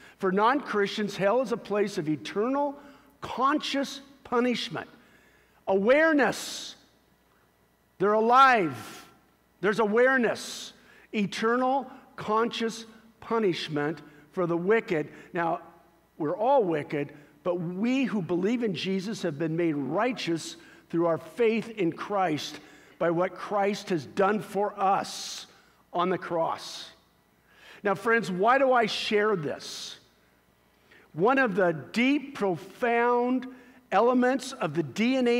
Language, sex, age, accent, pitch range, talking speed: English, male, 50-69, American, 180-245 Hz, 110 wpm